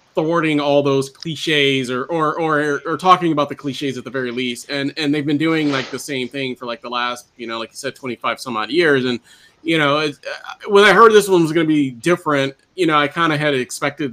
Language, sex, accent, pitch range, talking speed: English, male, American, 125-160 Hz, 245 wpm